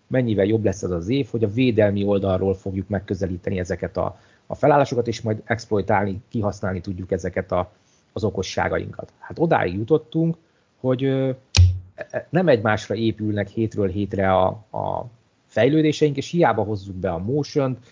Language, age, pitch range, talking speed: Hungarian, 30-49, 95-125 Hz, 135 wpm